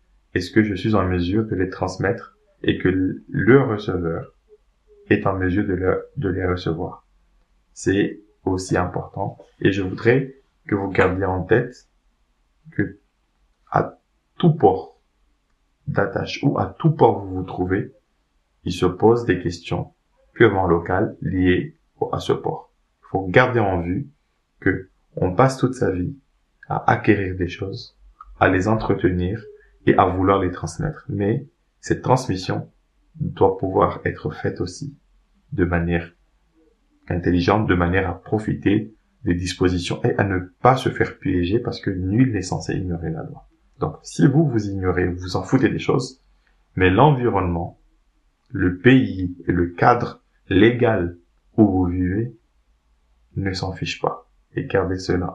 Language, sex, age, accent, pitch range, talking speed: French, male, 20-39, French, 90-115 Hz, 150 wpm